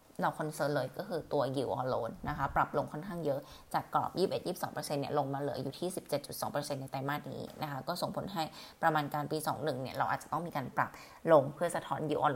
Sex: female